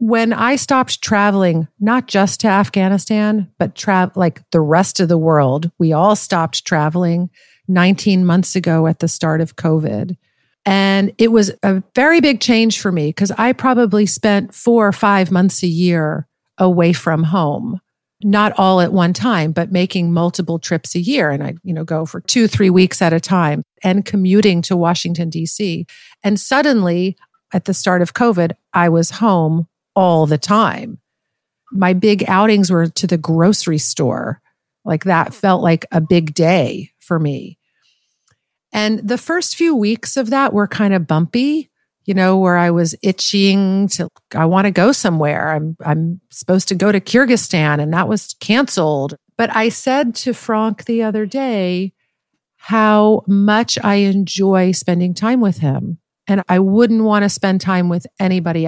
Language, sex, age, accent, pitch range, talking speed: English, female, 50-69, American, 170-210 Hz, 170 wpm